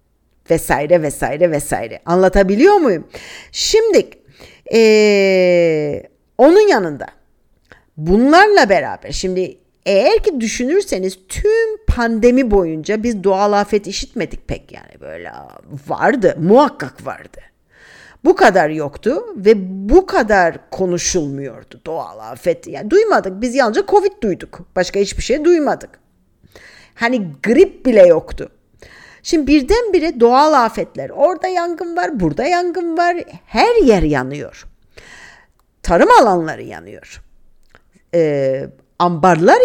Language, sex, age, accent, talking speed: Turkish, female, 50-69, native, 105 wpm